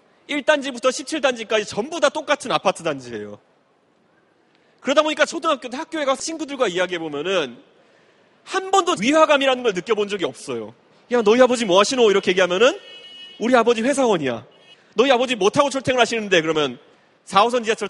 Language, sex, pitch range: Korean, male, 185-290 Hz